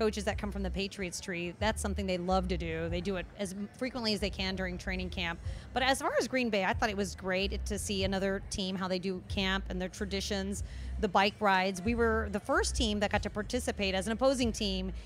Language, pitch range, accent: English, 180-220 Hz, American